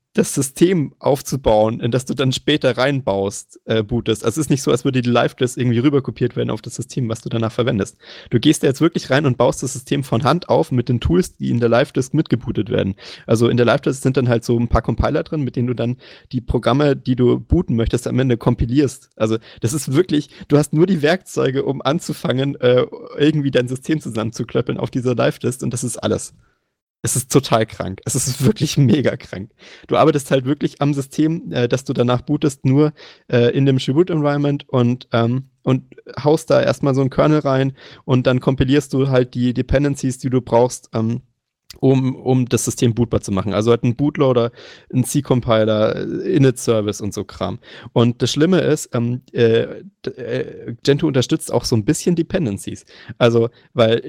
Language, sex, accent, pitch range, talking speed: German, male, German, 120-145 Hz, 200 wpm